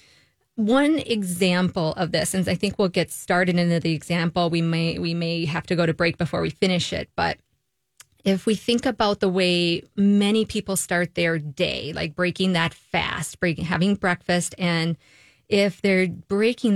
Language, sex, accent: English, female, American